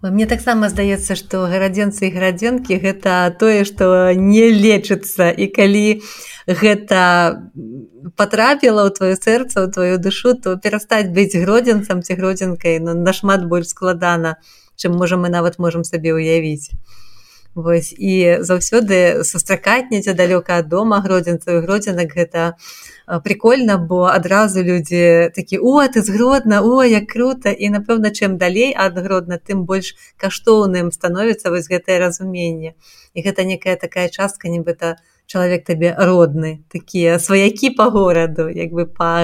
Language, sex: Russian, female